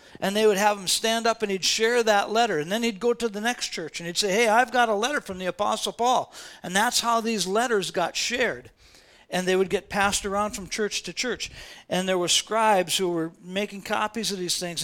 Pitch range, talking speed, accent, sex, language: 175-230 Hz, 245 wpm, American, male, English